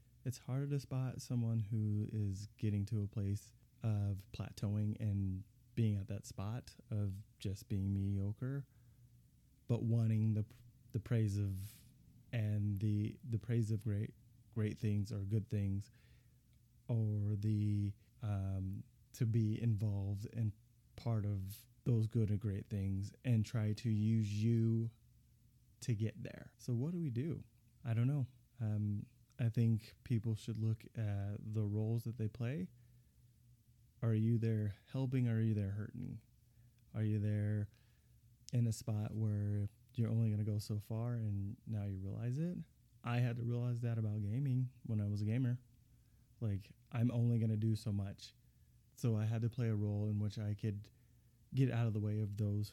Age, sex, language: 20-39, male, English